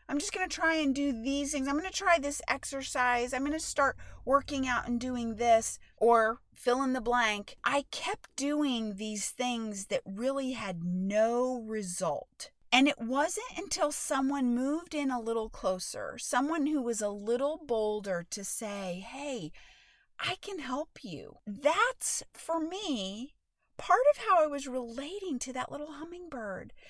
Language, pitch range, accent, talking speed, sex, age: English, 225-305 Hz, American, 165 wpm, female, 40-59